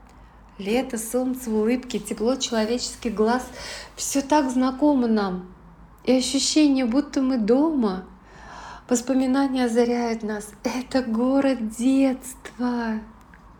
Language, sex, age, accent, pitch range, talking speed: Russian, female, 20-39, native, 220-255 Hz, 95 wpm